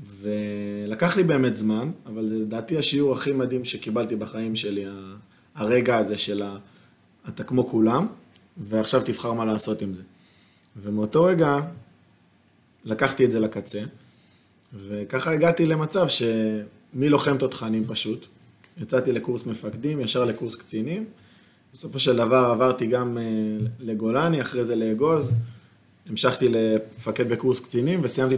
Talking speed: 125 wpm